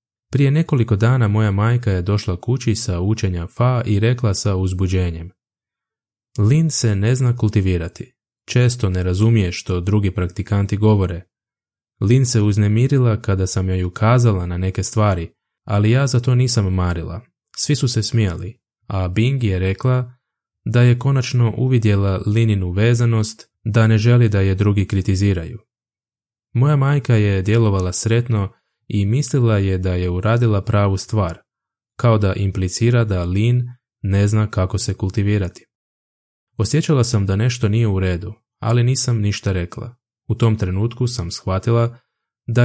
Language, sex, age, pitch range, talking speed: Croatian, male, 20-39, 95-120 Hz, 145 wpm